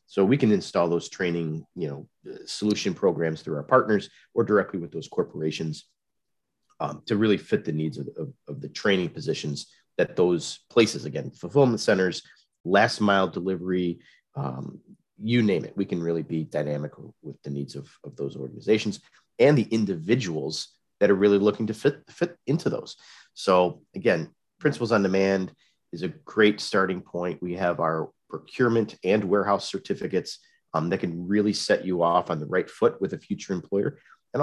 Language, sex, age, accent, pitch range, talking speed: English, male, 40-59, American, 80-105 Hz, 175 wpm